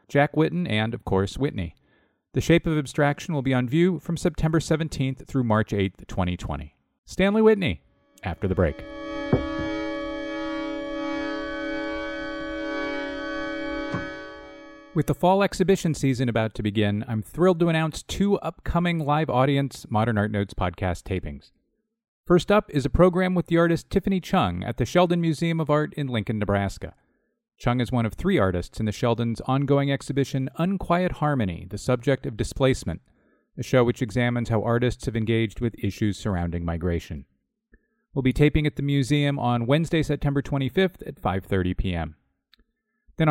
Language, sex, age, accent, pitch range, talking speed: English, male, 40-59, American, 105-165 Hz, 150 wpm